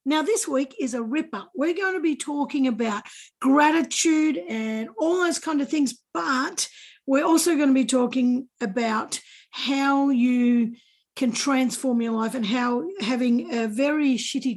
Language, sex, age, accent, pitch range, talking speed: English, female, 50-69, Australian, 225-275 Hz, 160 wpm